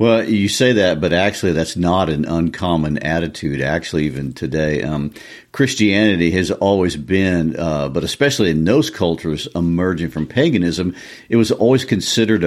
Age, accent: 50-69, American